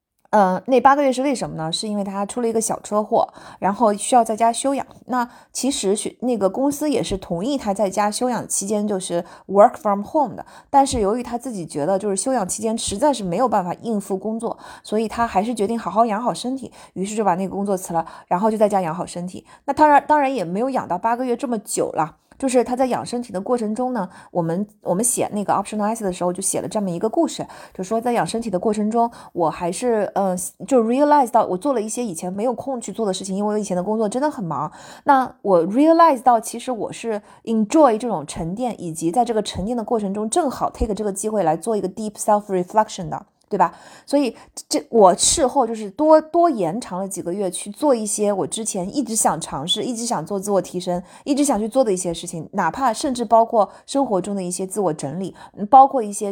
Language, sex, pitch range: Chinese, female, 190-245 Hz